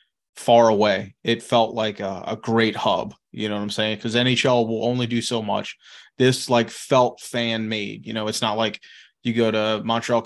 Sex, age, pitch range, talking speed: male, 20-39, 110-120 Hz, 205 wpm